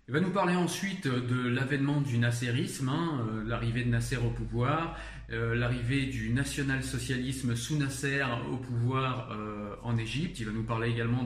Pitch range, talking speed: 115-135 Hz, 170 wpm